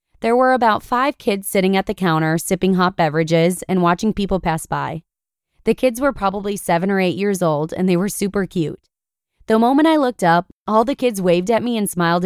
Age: 20-39